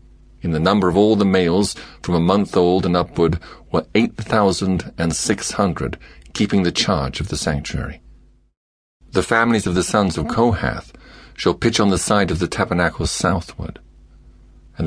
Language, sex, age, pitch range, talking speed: English, male, 50-69, 75-95 Hz, 170 wpm